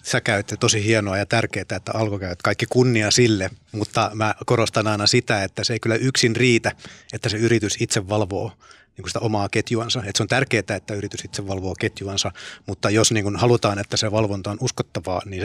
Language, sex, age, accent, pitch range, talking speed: Finnish, male, 30-49, native, 100-115 Hz, 200 wpm